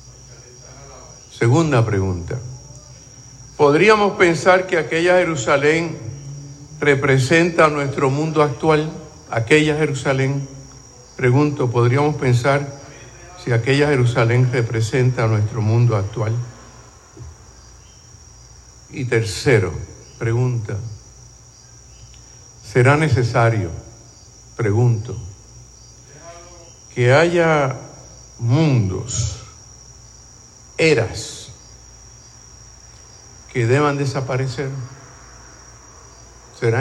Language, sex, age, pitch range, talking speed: Spanish, male, 50-69, 115-135 Hz, 60 wpm